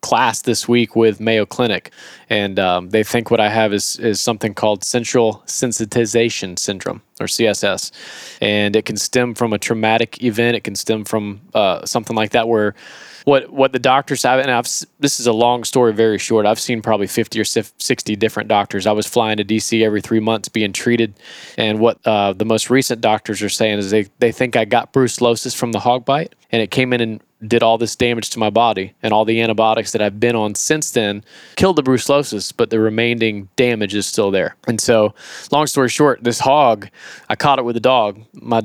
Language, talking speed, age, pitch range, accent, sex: English, 215 wpm, 20-39, 110-125 Hz, American, male